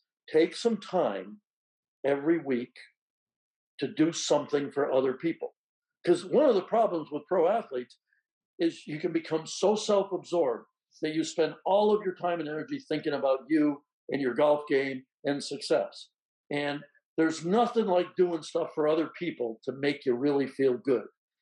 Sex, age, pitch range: male, 60-79, 150-205 Hz